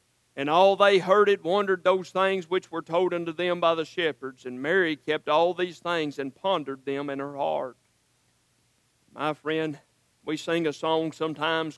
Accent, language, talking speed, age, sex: American, English, 180 wpm, 50-69, male